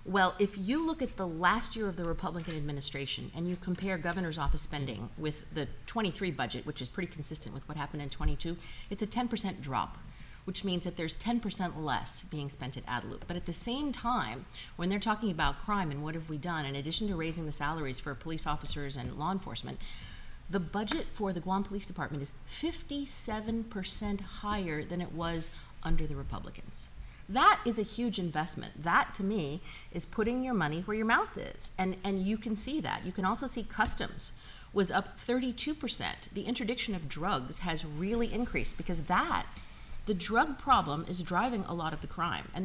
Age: 30-49